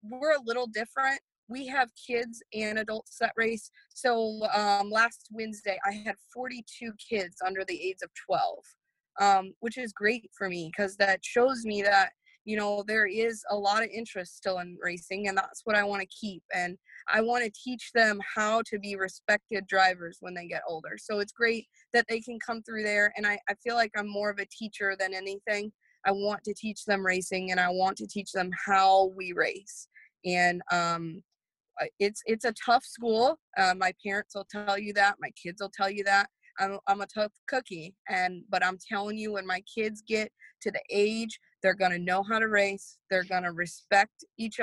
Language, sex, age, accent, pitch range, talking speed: English, female, 20-39, American, 190-225 Hz, 205 wpm